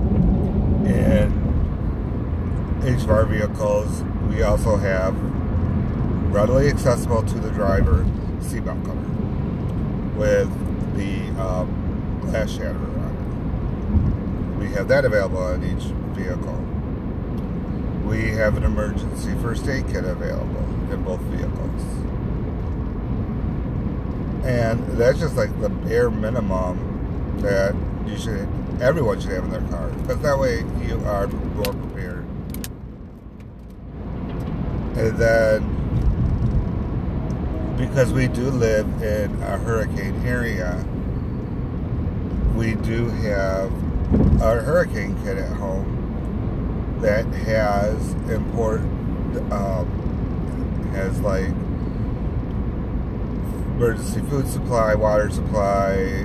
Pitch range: 90-110 Hz